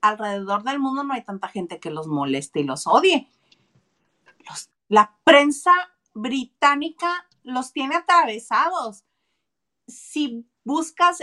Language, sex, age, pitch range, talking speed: Spanish, female, 40-59, 215-290 Hz, 120 wpm